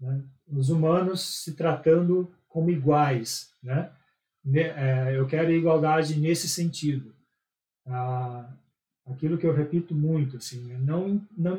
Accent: Brazilian